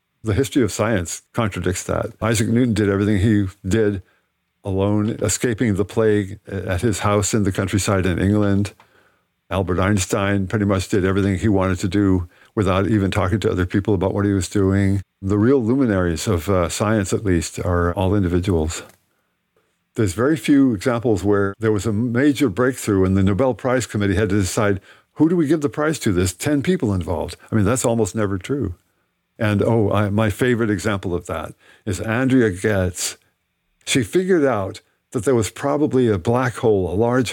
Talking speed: 185 wpm